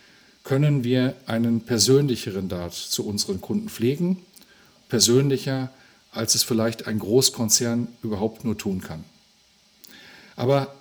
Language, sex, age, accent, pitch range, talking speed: German, male, 50-69, German, 115-170 Hz, 110 wpm